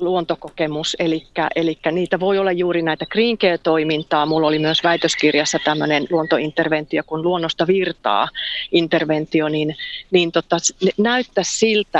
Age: 40-59